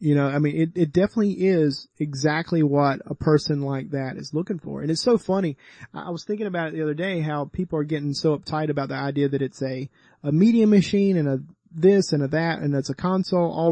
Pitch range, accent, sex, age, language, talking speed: 140-175 Hz, American, male, 30-49, English, 240 wpm